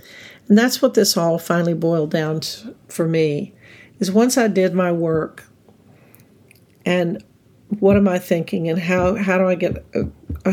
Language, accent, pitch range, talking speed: English, American, 155-190 Hz, 170 wpm